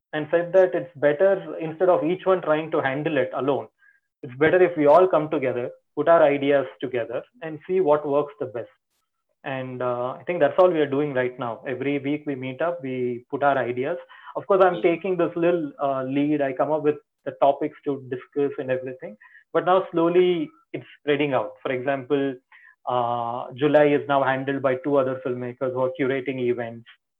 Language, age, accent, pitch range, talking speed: Kannada, 20-39, native, 130-165 Hz, 200 wpm